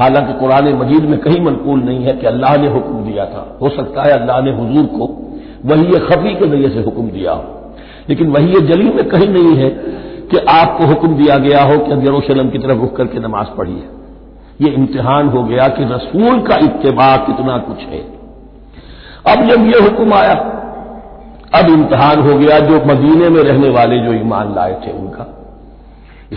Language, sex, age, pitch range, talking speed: Hindi, male, 60-79, 125-160 Hz, 190 wpm